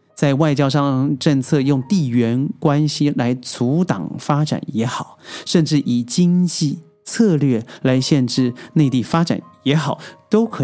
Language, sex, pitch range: Chinese, male, 125-165 Hz